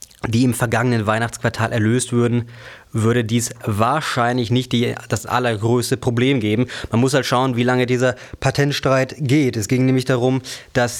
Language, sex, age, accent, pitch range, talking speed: German, male, 20-39, German, 115-130 Hz, 155 wpm